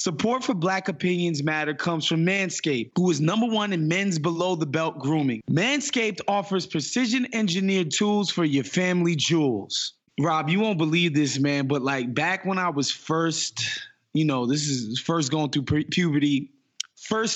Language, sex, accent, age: English, male, American, 20-39